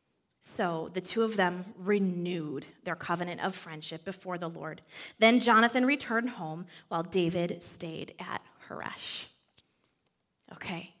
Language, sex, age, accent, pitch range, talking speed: English, female, 20-39, American, 195-265 Hz, 125 wpm